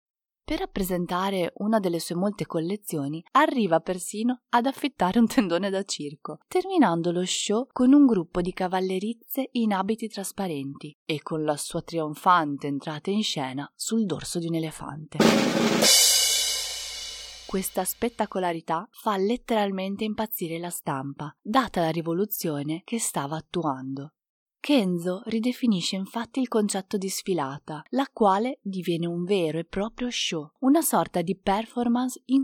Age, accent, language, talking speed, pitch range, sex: 30-49, native, Italian, 135 wpm, 165-220 Hz, female